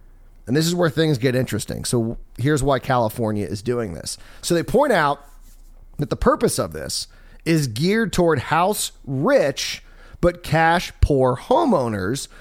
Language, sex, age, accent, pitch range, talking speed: English, male, 30-49, American, 105-165 Hz, 155 wpm